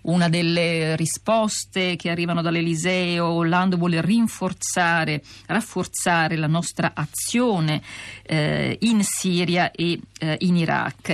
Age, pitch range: 50-69, 155-185 Hz